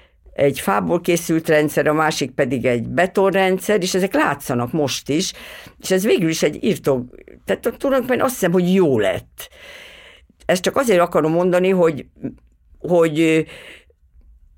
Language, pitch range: Hungarian, 135-190 Hz